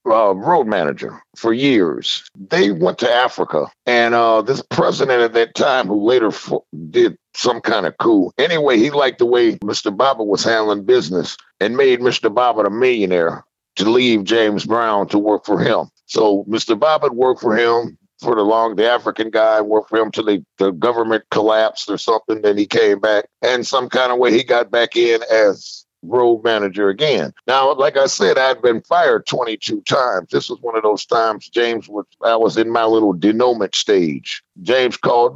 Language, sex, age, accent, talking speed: English, male, 50-69, American, 195 wpm